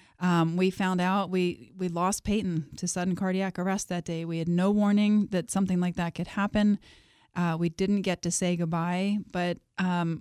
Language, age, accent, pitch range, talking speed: English, 30-49, American, 175-195 Hz, 195 wpm